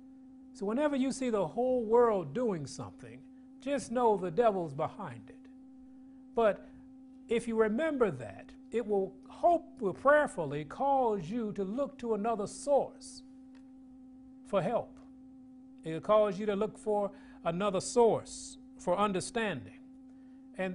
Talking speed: 130 wpm